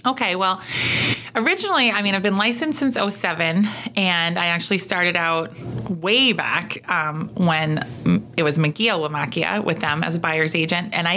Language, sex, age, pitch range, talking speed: English, female, 30-49, 160-195 Hz, 165 wpm